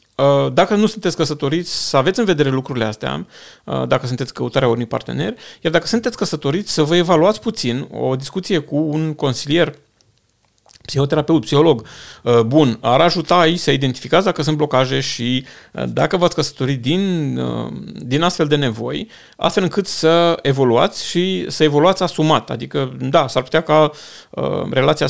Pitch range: 125-165 Hz